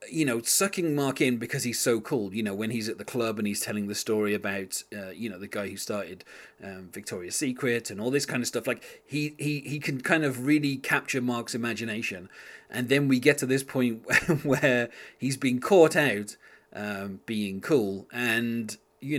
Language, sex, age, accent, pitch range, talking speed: English, male, 30-49, British, 110-140 Hz, 205 wpm